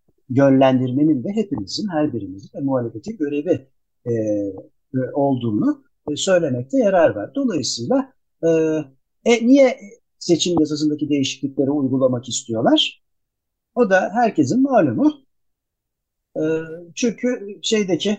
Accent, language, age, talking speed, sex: native, Turkish, 60-79, 90 wpm, male